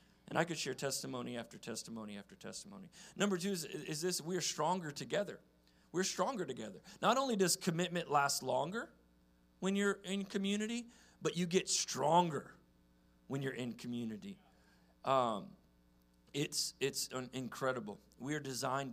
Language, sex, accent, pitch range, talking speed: English, male, American, 105-155 Hz, 150 wpm